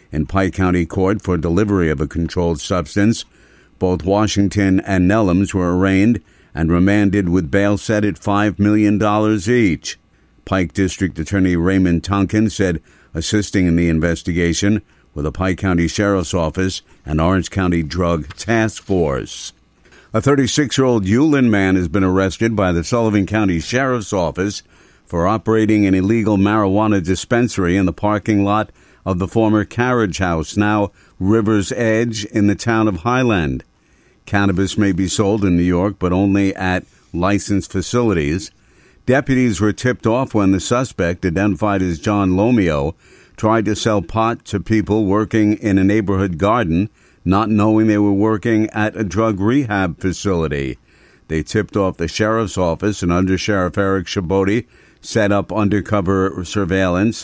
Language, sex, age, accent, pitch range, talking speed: English, male, 50-69, American, 90-110 Hz, 150 wpm